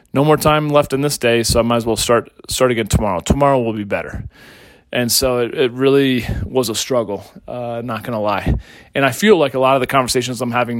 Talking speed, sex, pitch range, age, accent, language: 245 wpm, male, 110-130 Hz, 30-49, American, English